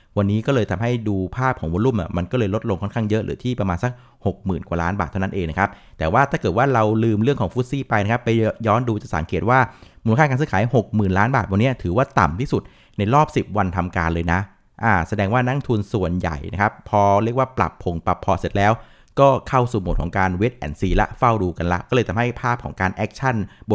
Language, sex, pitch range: Thai, male, 95-125 Hz